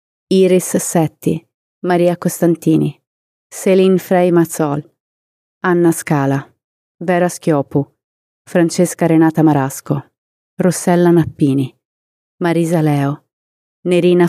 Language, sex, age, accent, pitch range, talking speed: Italian, female, 30-49, native, 145-175 Hz, 80 wpm